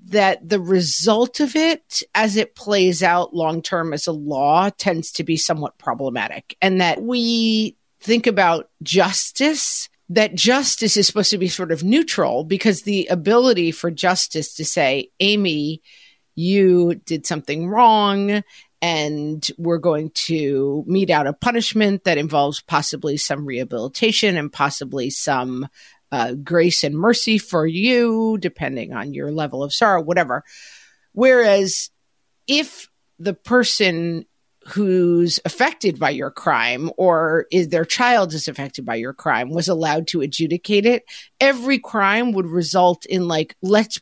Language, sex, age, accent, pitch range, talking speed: English, female, 50-69, American, 160-215 Hz, 145 wpm